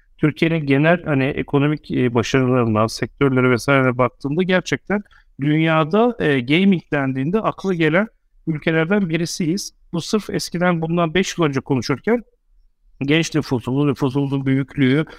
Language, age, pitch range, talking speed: Turkish, 50-69, 130-180 Hz, 115 wpm